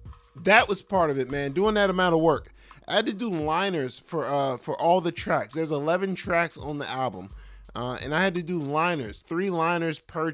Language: English